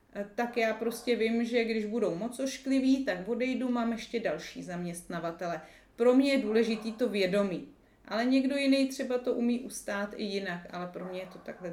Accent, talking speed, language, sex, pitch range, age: native, 185 wpm, Czech, female, 200-240 Hz, 30-49